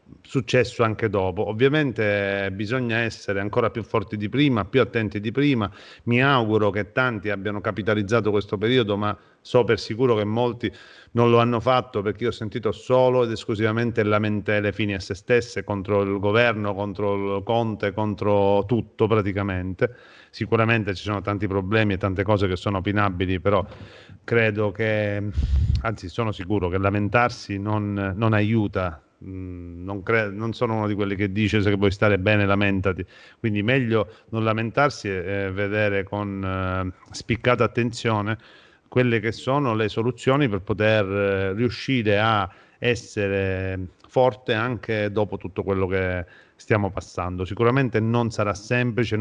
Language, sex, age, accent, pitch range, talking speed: Italian, male, 40-59, native, 100-115 Hz, 150 wpm